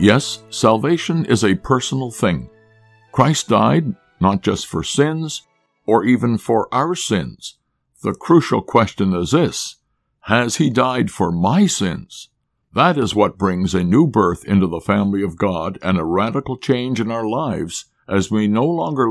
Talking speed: 160 wpm